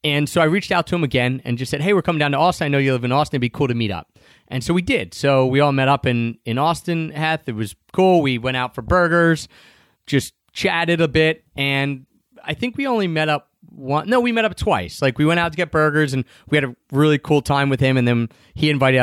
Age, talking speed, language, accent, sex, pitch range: 30-49, 275 wpm, English, American, male, 125-170 Hz